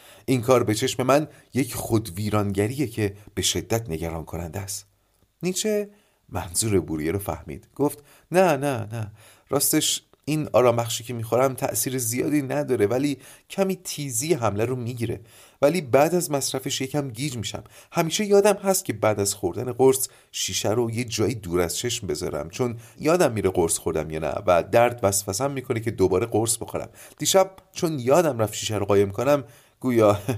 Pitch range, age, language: 100-145 Hz, 40-59, Persian